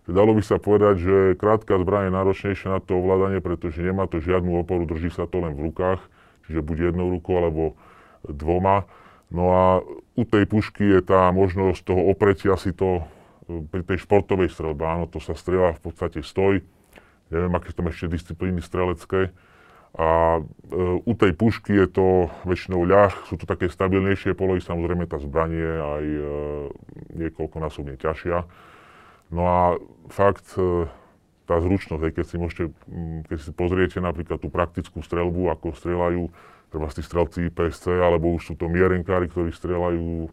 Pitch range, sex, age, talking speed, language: 85-95 Hz, female, 20-39, 160 wpm, Slovak